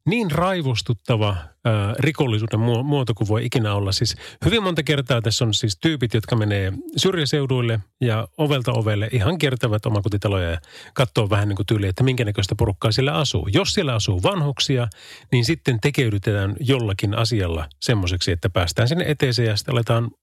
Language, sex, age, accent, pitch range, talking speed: Finnish, male, 30-49, native, 105-140 Hz, 160 wpm